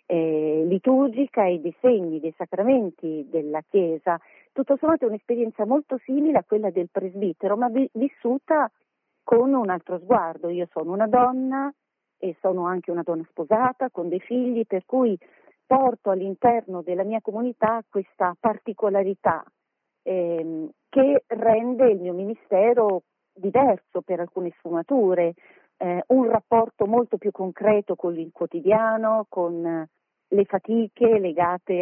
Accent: native